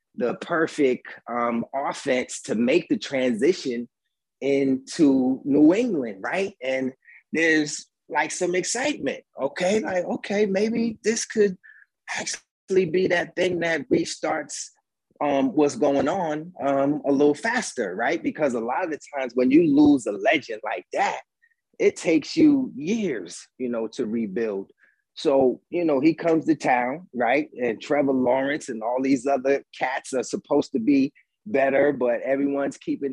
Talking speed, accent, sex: 150 wpm, American, male